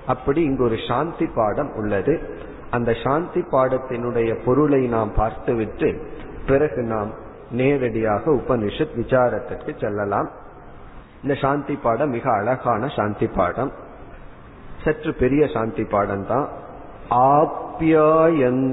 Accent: native